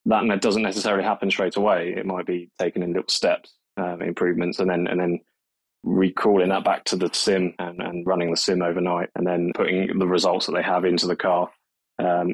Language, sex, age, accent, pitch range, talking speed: English, male, 20-39, British, 90-100 Hz, 210 wpm